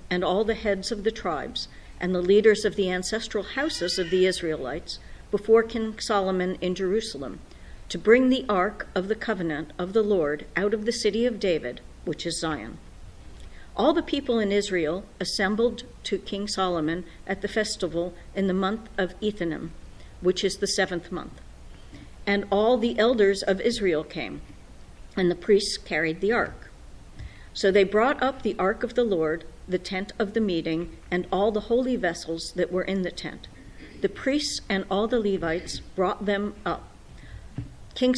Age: 50-69